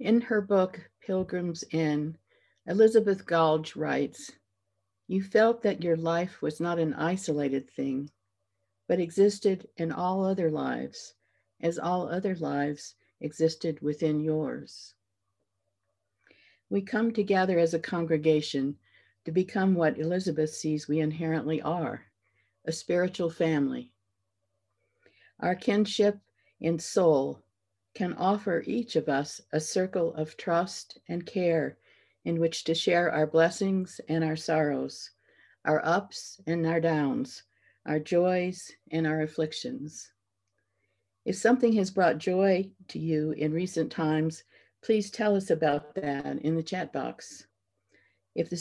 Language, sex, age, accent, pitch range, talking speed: English, female, 60-79, American, 145-180 Hz, 125 wpm